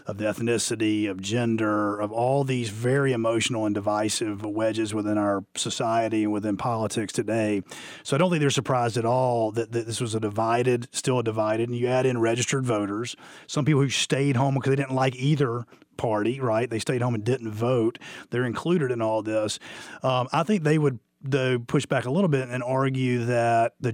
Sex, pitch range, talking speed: male, 115-135 Hz, 205 wpm